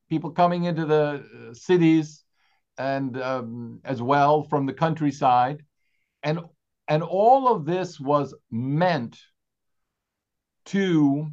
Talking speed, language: 105 wpm, English